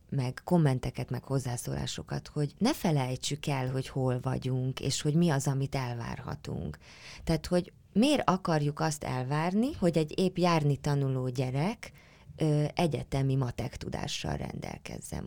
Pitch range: 130-175 Hz